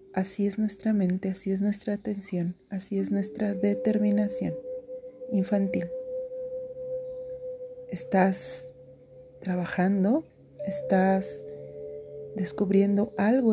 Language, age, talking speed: Spanish, 30-49, 80 wpm